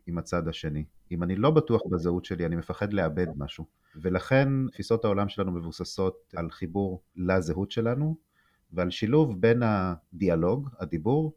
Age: 30-49